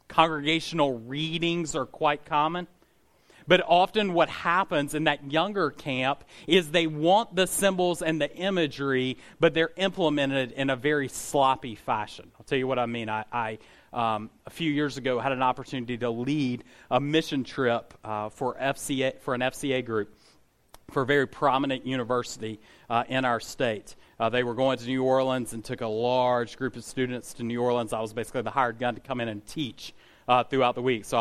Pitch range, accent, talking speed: 125-165 Hz, American, 190 wpm